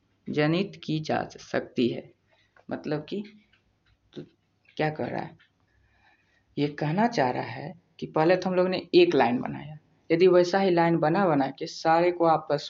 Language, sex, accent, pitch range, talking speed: Hindi, female, native, 135-180 Hz, 170 wpm